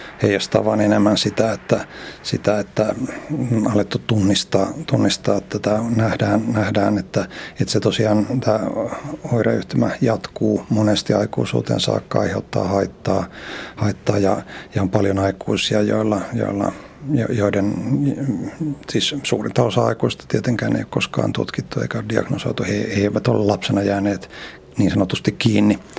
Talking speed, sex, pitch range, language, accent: 130 wpm, male, 100-115 Hz, Finnish, native